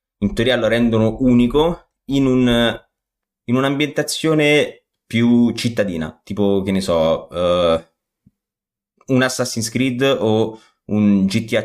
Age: 30-49